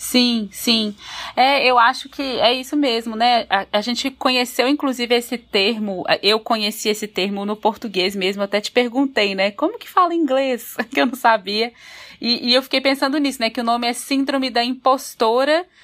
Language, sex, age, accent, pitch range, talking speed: Portuguese, female, 20-39, Brazilian, 210-260 Hz, 190 wpm